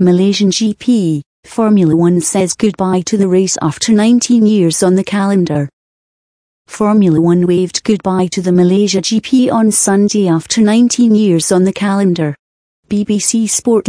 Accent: British